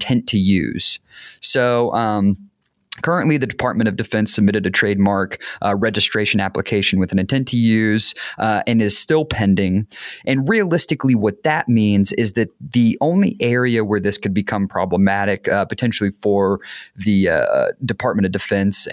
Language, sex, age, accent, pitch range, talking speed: English, male, 30-49, American, 100-120 Hz, 155 wpm